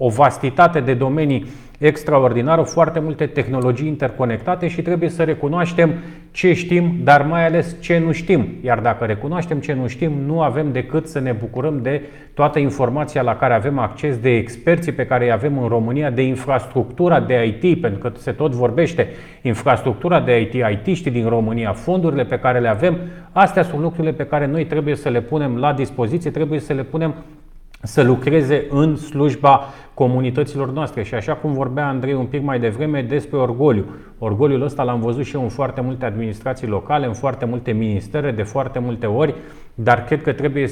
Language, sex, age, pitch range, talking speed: Romanian, male, 30-49, 125-150 Hz, 180 wpm